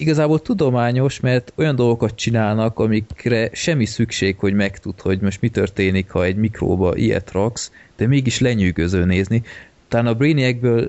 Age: 20-39